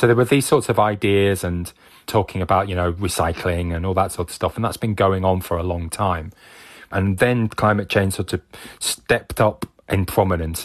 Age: 20-39